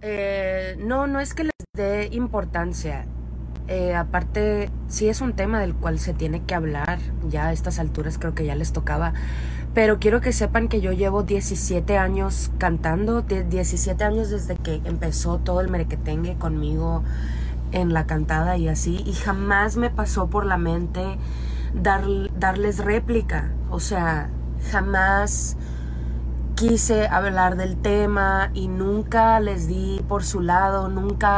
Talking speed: 145 wpm